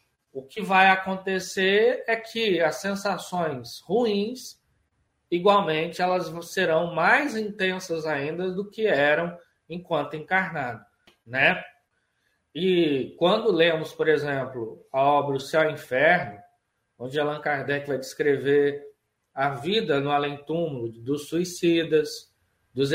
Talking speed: 120 wpm